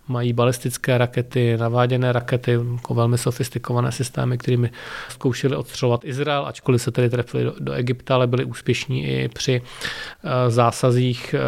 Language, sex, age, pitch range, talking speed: Czech, male, 40-59, 125-135 Hz, 125 wpm